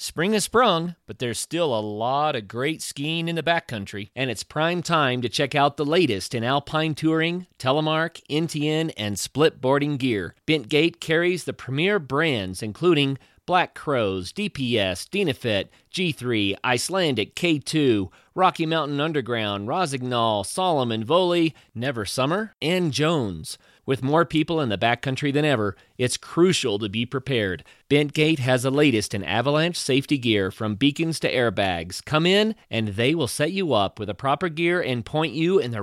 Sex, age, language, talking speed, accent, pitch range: male, 40-59, English, 160 wpm, American, 115-160 Hz